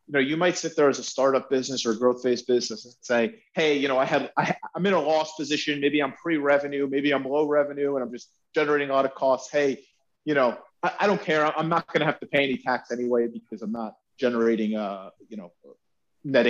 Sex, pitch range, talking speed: male, 135-160 Hz, 245 wpm